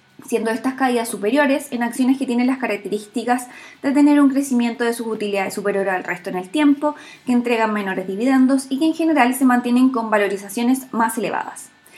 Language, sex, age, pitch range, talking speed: Spanish, female, 20-39, 215-275 Hz, 185 wpm